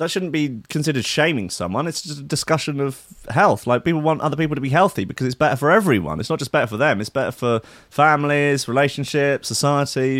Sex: male